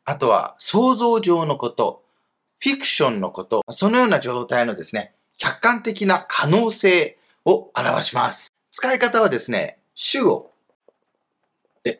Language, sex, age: Japanese, male, 30-49